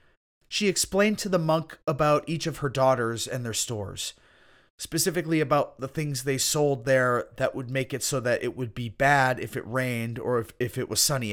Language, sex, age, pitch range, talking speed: English, male, 30-49, 115-165 Hz, 205 wpm